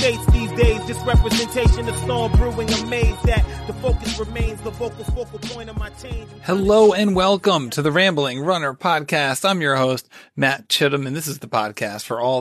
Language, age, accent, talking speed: English, 30-49, American, 160 wpm